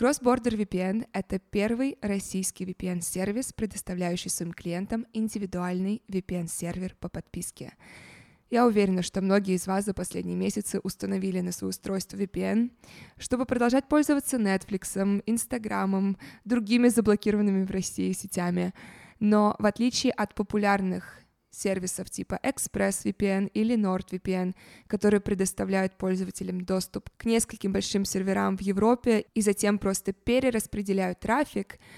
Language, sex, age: Russian, female, 20-39